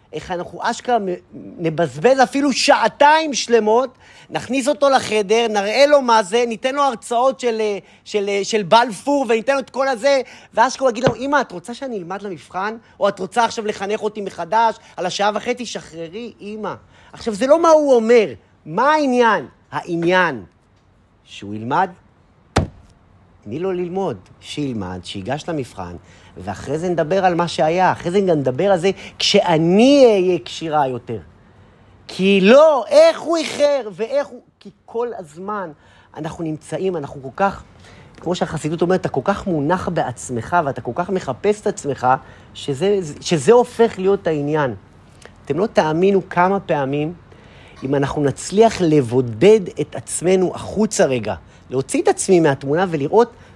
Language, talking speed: Hebrew, 150 wpm